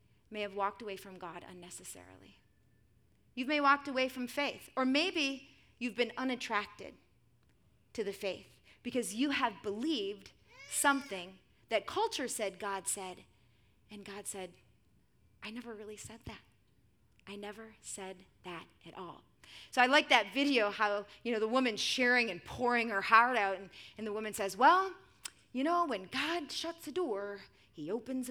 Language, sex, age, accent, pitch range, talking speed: English, female, 30-49, American, 205-285 Hz, 165 wpm